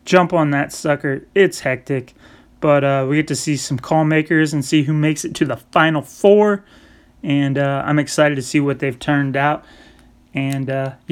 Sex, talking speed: male, 195 wpm